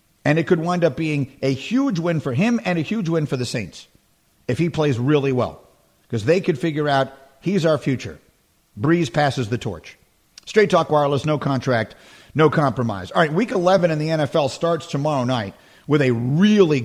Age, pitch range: 50-69, 130-165 Hz